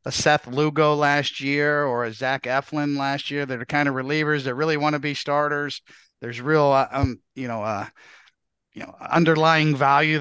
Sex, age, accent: male, 50-69, American